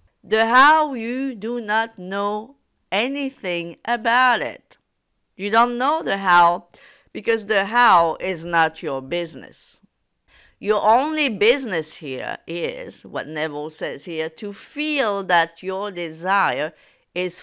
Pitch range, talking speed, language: 165-230 Hz, 125 wpm, English